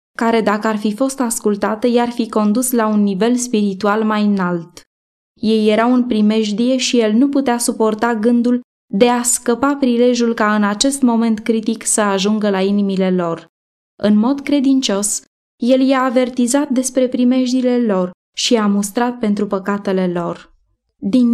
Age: 20-39